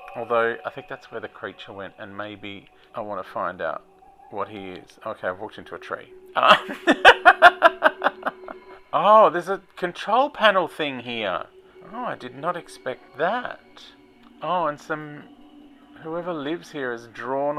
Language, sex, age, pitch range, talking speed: English, male, 40-59, 120-190 Hz, 155 wpm